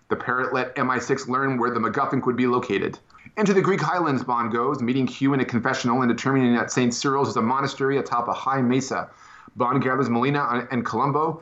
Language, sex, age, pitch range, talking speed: English, male, 30-49, 120-145 Hz, 205 wpm